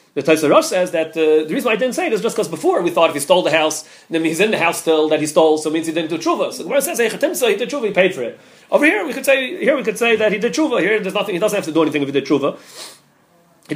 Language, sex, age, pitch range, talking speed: English, male, 30-49, 155-220 Hz, 340 wpm